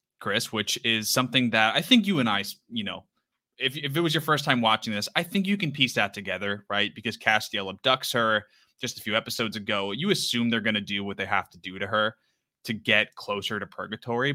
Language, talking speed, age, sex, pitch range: English, 235 wpm, 20-39, male, 105-130 Hz